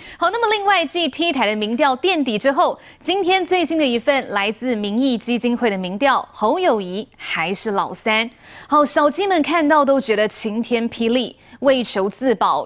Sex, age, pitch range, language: female, 20-39, 225-310 Hz, Chinese